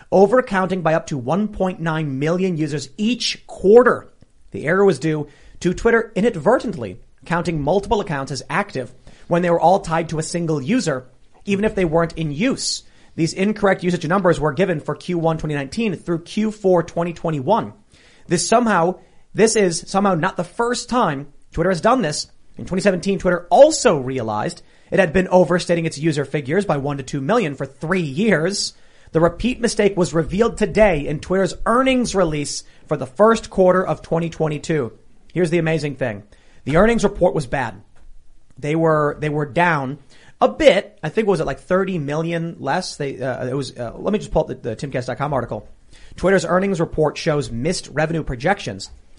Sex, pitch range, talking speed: male, 150-195 Hz, 175 wpm